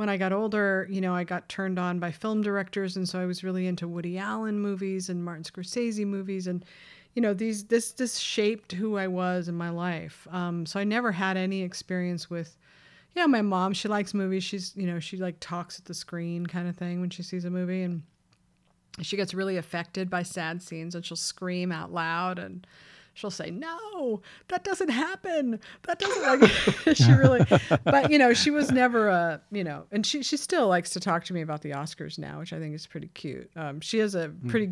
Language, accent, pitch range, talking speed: English, American, 170-205 Hz, 225 wpm